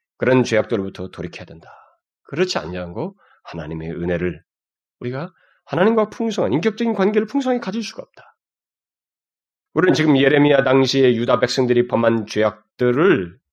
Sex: male